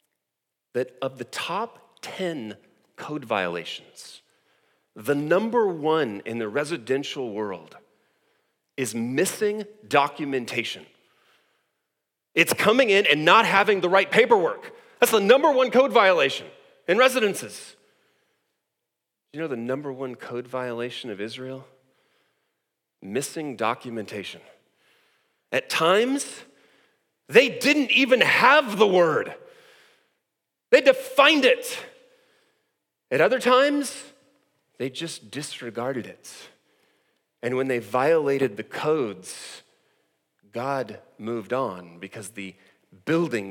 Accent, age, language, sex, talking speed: American, 40-59, English, male, 105 wpm